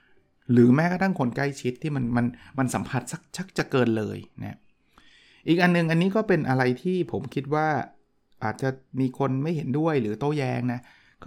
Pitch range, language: 115-145 Hz, Thai